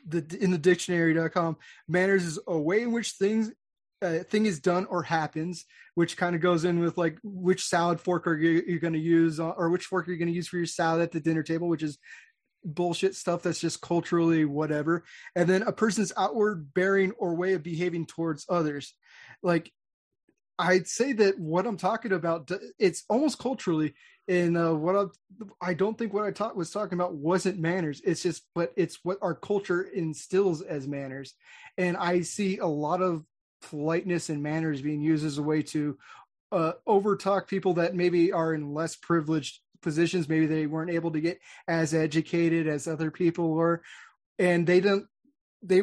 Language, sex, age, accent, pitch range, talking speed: English, male, 20-39, American, 165-185 Hz, 190 wpm